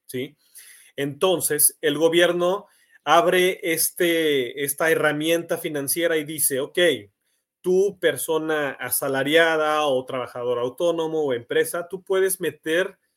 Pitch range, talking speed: 135-175 Hz, 105 wpm